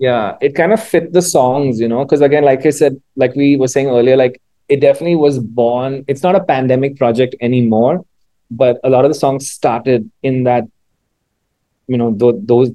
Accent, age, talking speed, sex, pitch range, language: Indian, 30-49, 200 wpm, male, 115-140 Hz, English